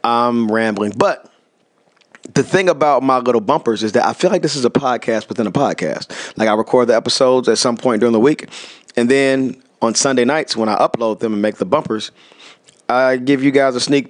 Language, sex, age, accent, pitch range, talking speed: English, male, 40-59, American, 115-135 Hz, 215 wpm